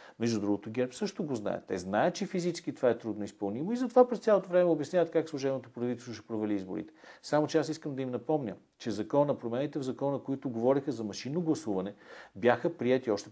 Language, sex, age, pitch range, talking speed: Bulgarian, male, 50-69, 110-160 Hz, 205 wpm